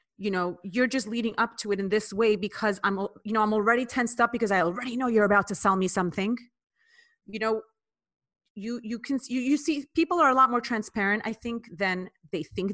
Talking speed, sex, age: 215 wpm, female, 30-49